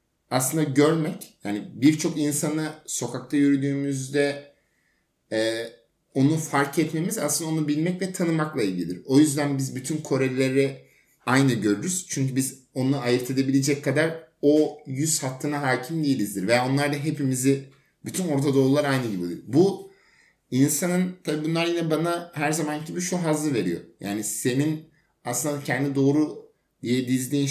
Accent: native